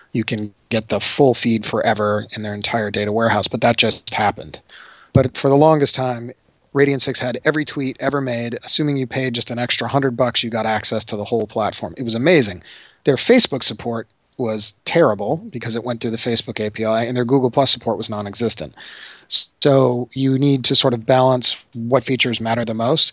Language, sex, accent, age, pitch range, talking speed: English, male, American, 30-49, 110-140 Hz, 195 wpm